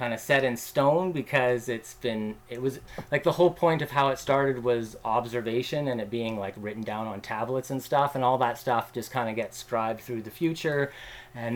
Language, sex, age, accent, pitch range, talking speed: English, male, 30-49, American, 115-135 Hz, 225 wpm